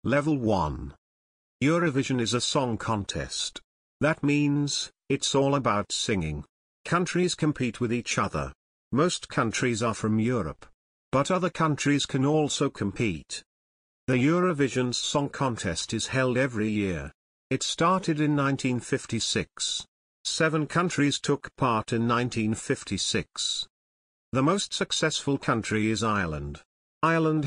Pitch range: 105-145 Hz